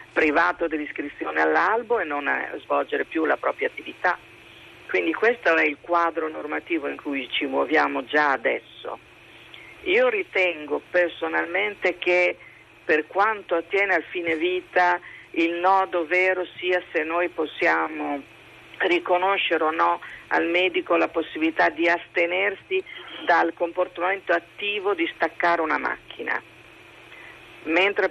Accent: native